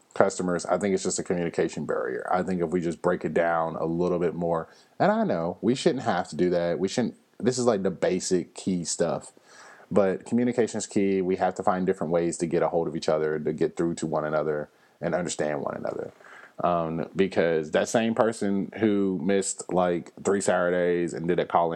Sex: male